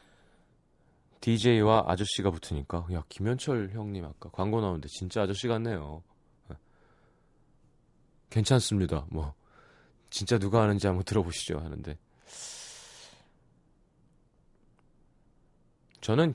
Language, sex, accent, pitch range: Korean, male, native, 90-125 Hz